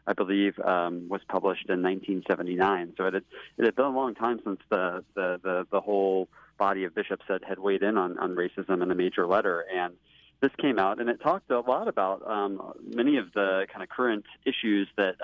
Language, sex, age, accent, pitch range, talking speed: English, male, 30-49, American, 95-110 Hz, 200 wpm